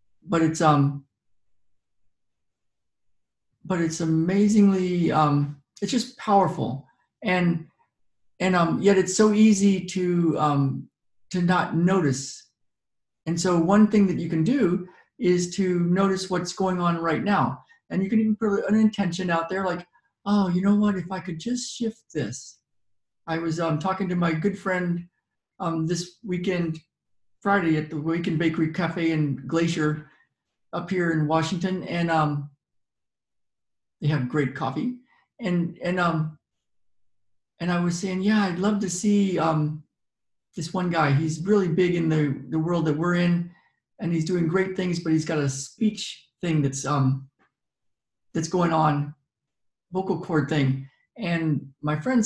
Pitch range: 145-190 Hz